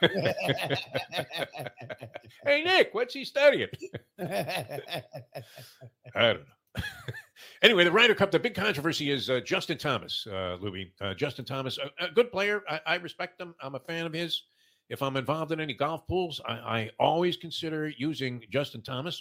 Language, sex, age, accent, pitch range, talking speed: English, male, 50-69, American, 115-165 Hz, 155 wpm